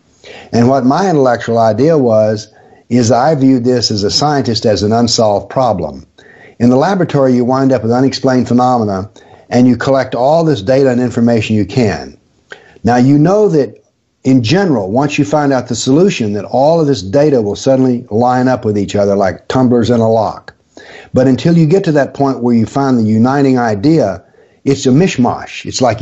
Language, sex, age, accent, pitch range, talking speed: English, male, 60-79, American, 115-135 Hz, 190 wpm